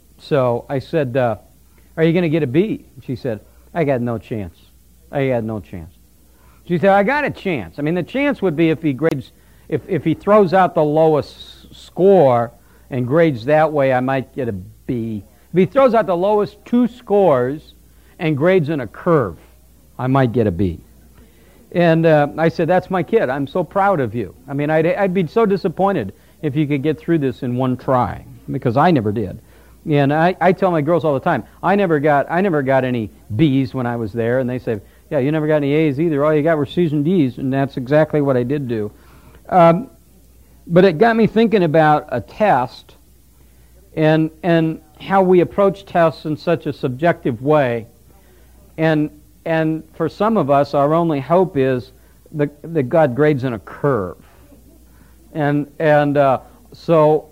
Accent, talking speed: American, 200 wpm